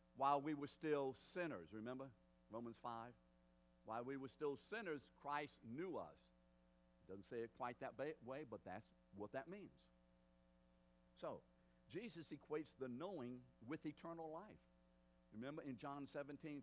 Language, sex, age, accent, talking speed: English, male, 60-79, American, 140 wpm